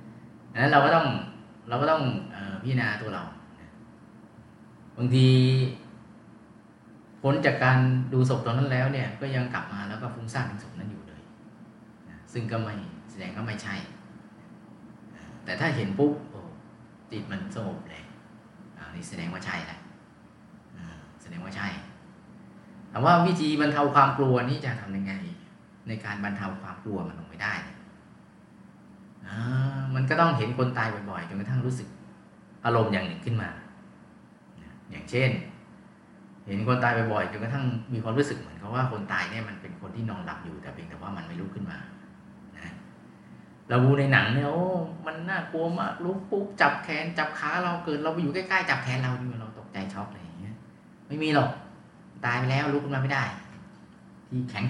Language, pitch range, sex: Thai, 110-145 Hz, male